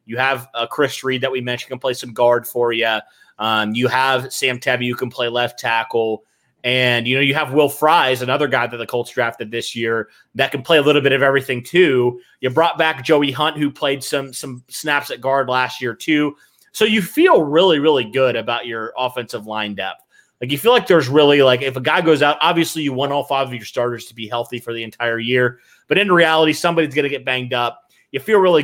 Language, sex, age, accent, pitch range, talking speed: English, male, 30-49, American, 120-155 Hz, 235 wpm